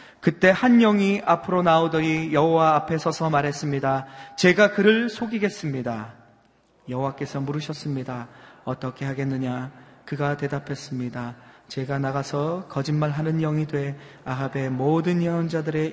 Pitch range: 130-170 Hz